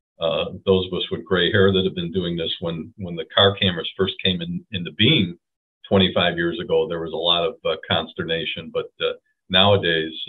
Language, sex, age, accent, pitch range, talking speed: English, male, 50-69, American, 90-110 Hz, 205 wpm